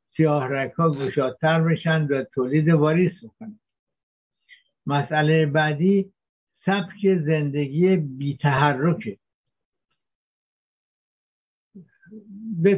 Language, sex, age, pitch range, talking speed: Persian, male, 60-79, 145-180 Hz, 60 wpm